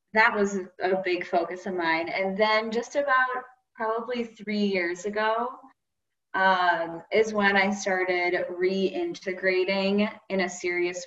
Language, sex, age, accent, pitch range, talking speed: English, female, 20-39, American, 175-200 Hz, 130 wpm